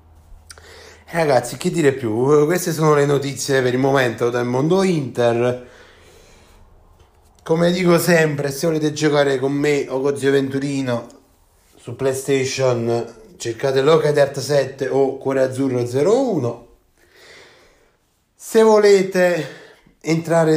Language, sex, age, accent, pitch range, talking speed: Italian, male, 30-49, native, 120-155 Hz, 115 wpm